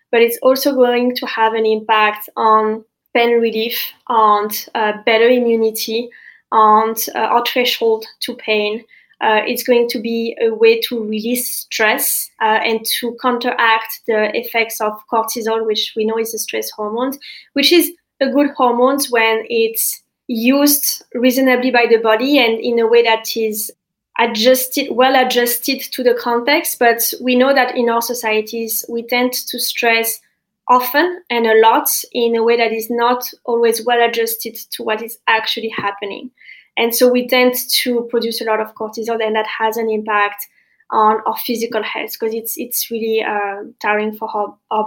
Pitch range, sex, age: 220-250 Hz, female, 20-39